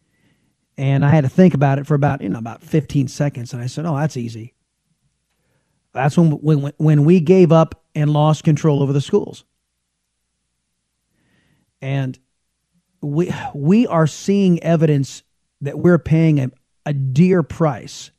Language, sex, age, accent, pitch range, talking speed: English, male, 40-59, American, 135-165 Hz, 150 wpm